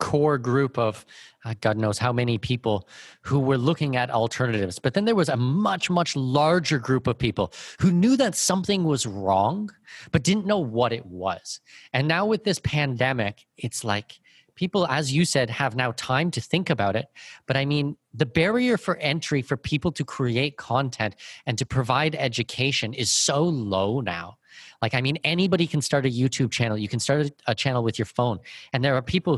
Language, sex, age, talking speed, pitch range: English, male, 30-49, 195 wpm, 115-150 Hz